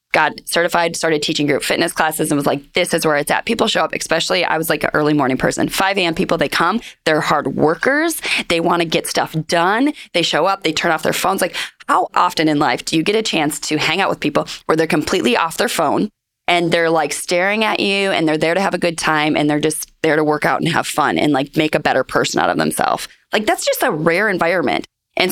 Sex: female